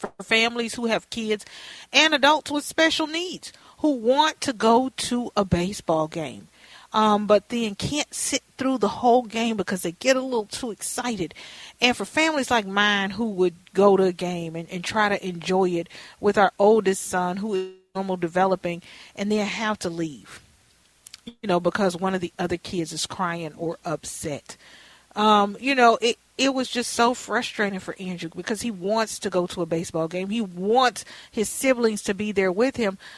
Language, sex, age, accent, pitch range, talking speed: English, female, 40-59, American, 185-240 Hz, 190 wpm